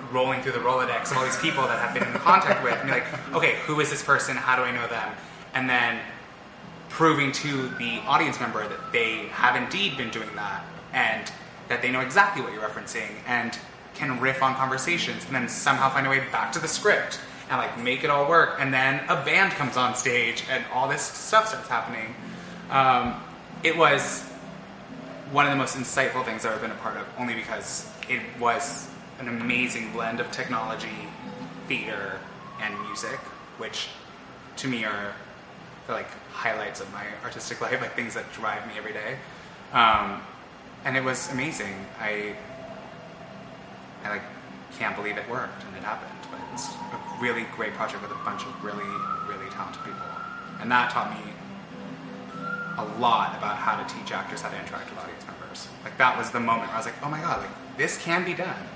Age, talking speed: 20-39, 195 wpm